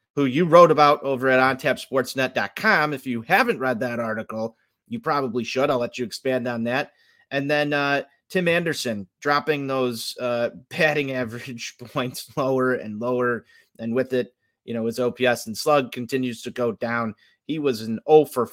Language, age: English, 30-49